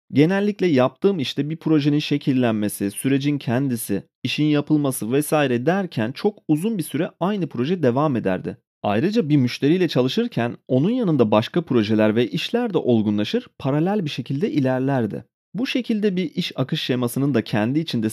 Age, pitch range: 30-49, 120-185 Hz